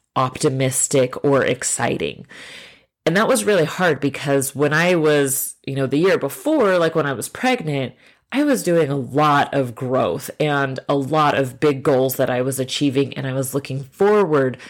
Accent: American